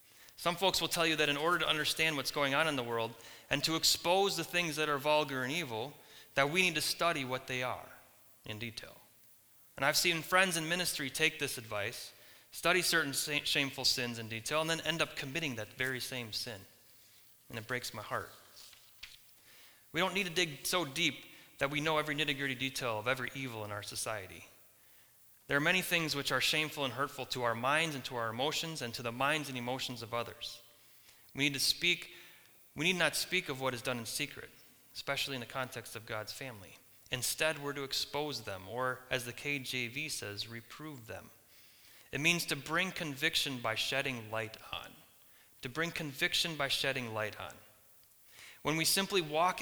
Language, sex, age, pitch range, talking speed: English, male, 30-49, 120-160 Hz, 195 wpm